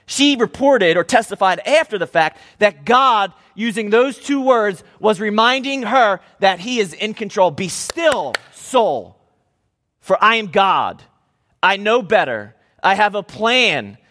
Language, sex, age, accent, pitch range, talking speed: English, male, 30-49, American, 175-245 Hz, 150 wpm